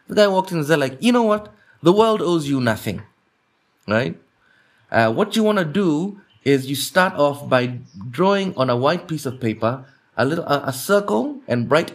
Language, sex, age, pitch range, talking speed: English, male, 30-49, 120-170 Hz, 205 wpm